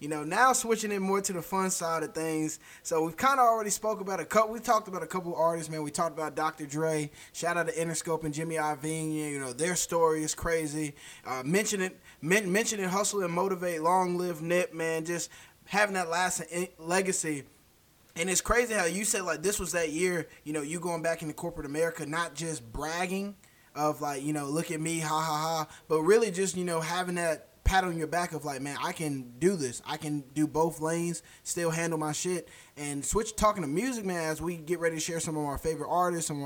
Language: English